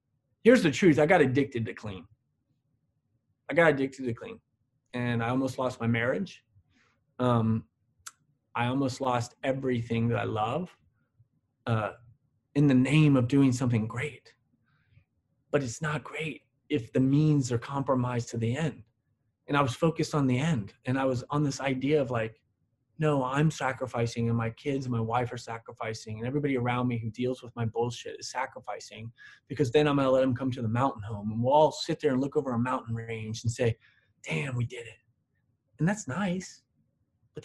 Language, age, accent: English, 30-49, American